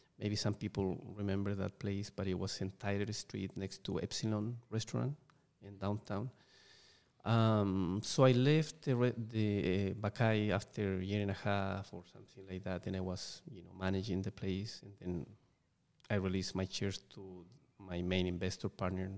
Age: 30-49